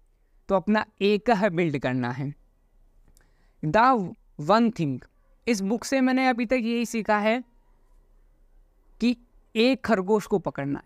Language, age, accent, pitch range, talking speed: Hindi, 20-39, native, 155-235 Hz, 135 wpm